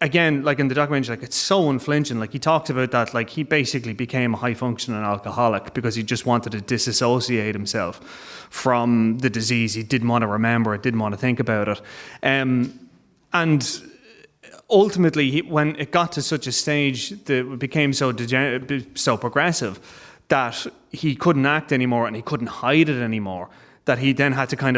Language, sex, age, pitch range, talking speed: English, male, 30-49, 120-140 Hz, 190 wpm